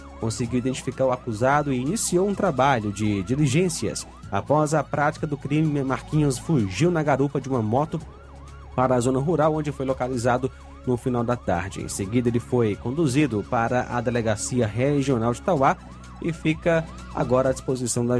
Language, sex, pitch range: Portuguese, male, 115-145 Hz